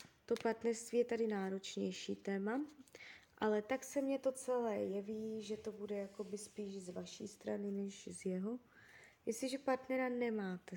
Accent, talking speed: native, 145 wpm